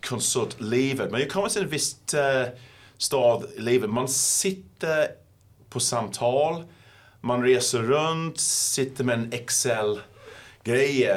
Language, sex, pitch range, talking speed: Swedish, male, 100-135 Hz, 120 wpm